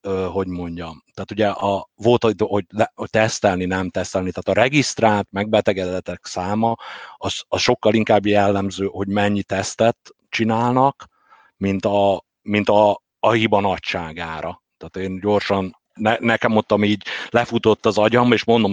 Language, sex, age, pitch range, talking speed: Hungarian, male, 50-69, 85-105 Hz, 145 wpm